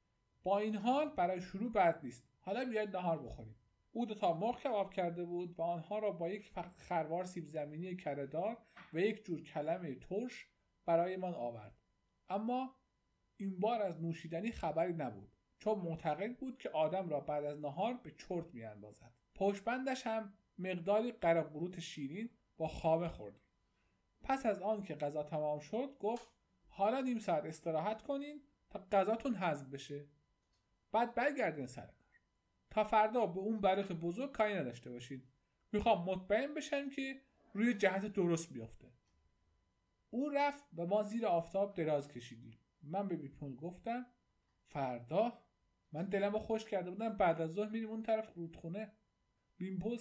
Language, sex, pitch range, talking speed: Persian, male, 145-215 Hz, 150 wpm